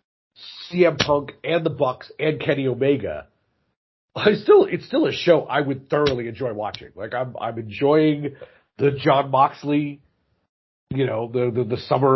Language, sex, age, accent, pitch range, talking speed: English, male, 40-59, American, 130-170 Hz, 160 wpm